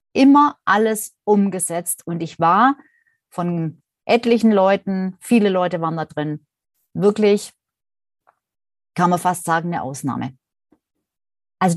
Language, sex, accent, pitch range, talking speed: German, female, German, 175-230 Hz, 110 wpm